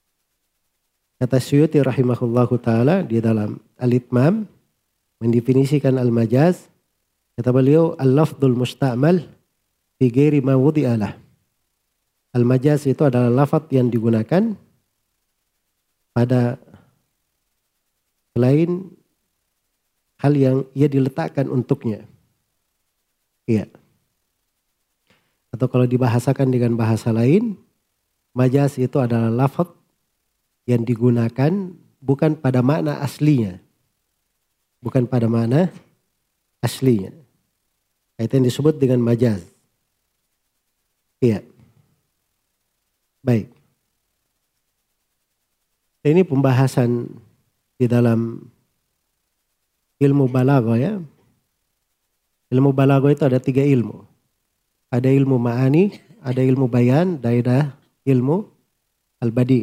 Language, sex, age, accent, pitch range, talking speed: Indonesian, male, 40-59, native, 120-145 Hz, 80 wpm